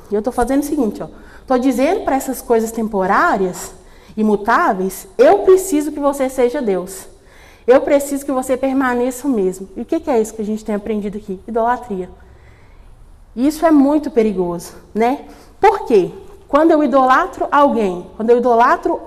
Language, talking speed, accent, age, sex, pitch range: Portuguese, 170 wpm, Brazilian, 20-39, female, 240-330 Hz